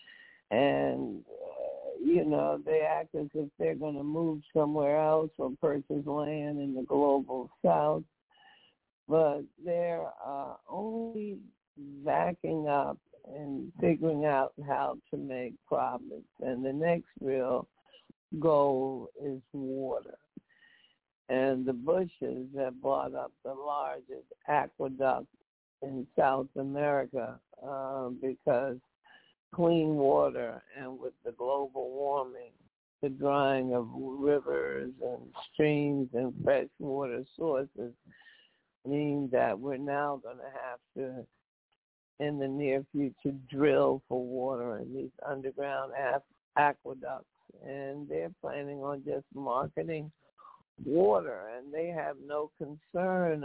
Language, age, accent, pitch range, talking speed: English, 60-79, American, 135-155 Hz, 115 wpm